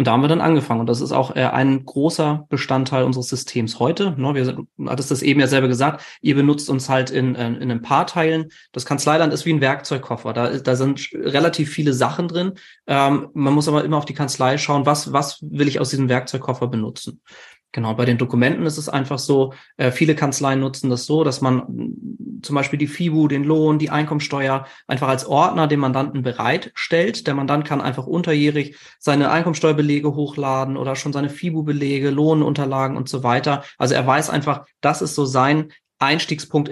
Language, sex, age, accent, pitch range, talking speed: German, male, 30-49, German, 130-150 Hz, 190 wpm